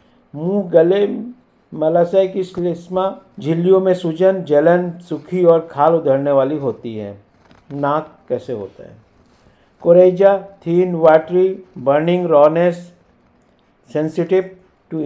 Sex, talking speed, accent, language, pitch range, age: male, 105 wpm, native, Hindi, 145-180 Hz, 50-69